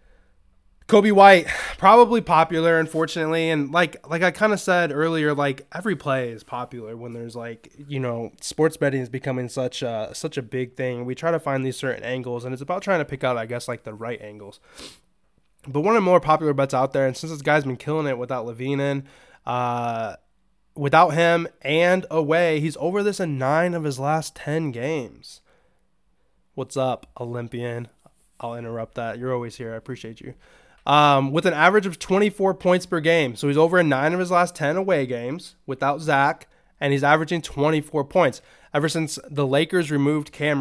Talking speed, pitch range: 195 wpm, 130-165 Hz